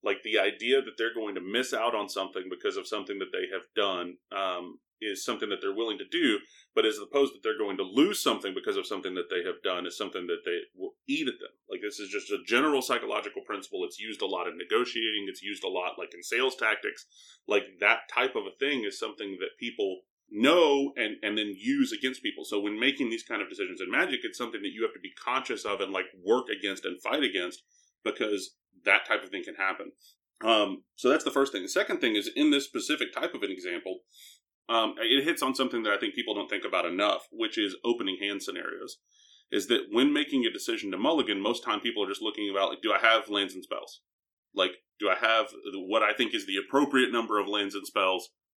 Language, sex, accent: English, male, American